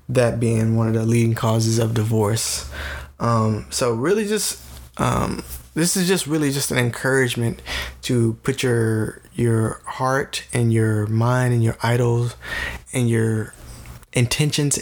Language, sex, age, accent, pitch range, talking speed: English, male, 20-39, American, 110-130 Hz, 140 wpm